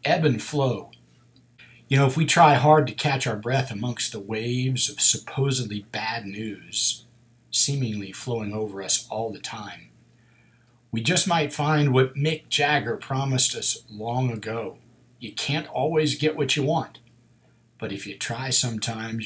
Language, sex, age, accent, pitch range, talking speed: English, male, 50-69, American, 110-135 Hz, 155 wpm